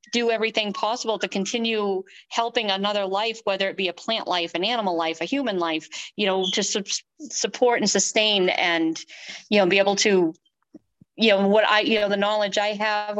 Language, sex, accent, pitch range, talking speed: English, female, American, 185-220 Hz, 190 wpm